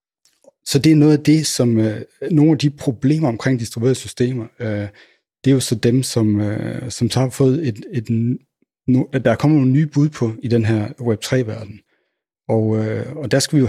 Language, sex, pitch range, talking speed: Danish, male, 110-130 Hz, 210 wpm